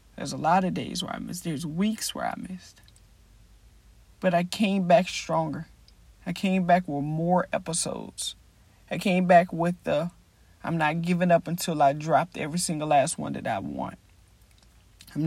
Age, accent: 40-59, American